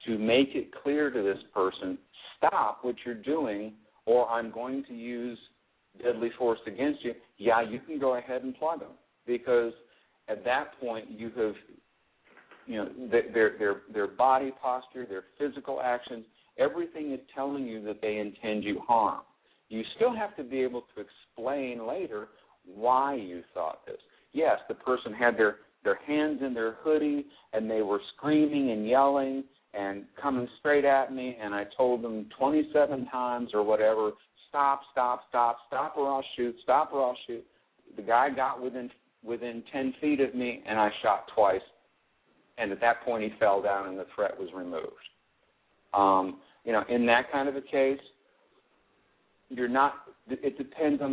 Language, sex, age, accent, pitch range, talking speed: English, male, 50-69, American, 115-135 Hz, 170 wpm